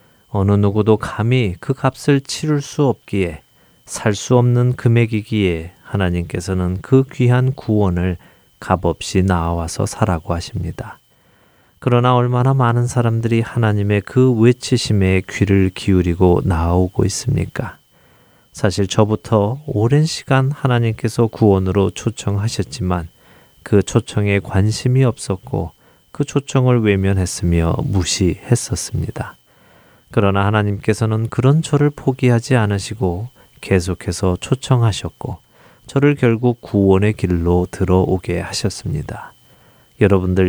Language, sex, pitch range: Korean, male, 95-125 Hz